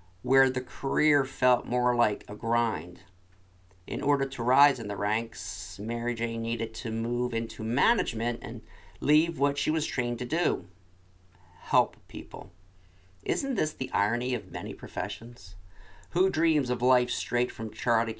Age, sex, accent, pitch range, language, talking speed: 50-69, male, American, 95-130 Hz, English, 150 wpm